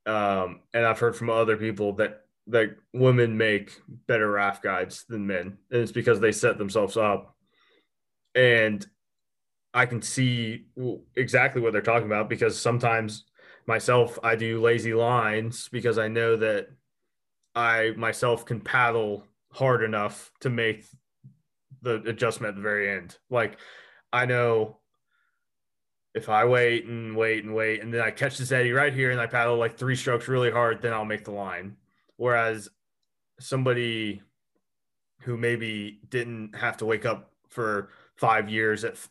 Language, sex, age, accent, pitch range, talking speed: English, male, 20-39, American, 105-120 Hz, 155 wpm